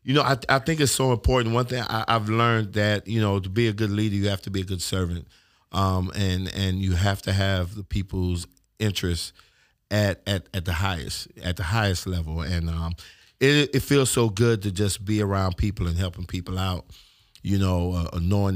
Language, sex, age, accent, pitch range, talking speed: English, male, 50-69, American, 90-110 Hz, 215 wpm